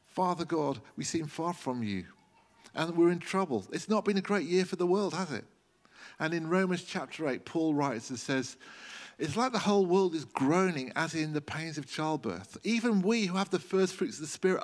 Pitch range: 135-180 Hz